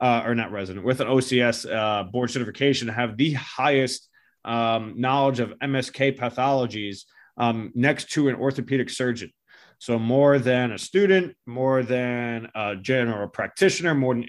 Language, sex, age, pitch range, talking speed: English, male, 30-49, 125-155 Hz, 155 wpm